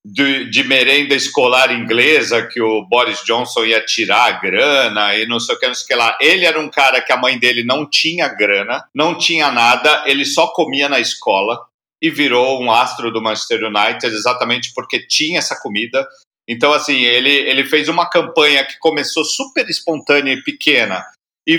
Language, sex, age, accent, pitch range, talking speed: Portuguese, male, 50-69, Brazilian, 125-165 Hz, 190 wpm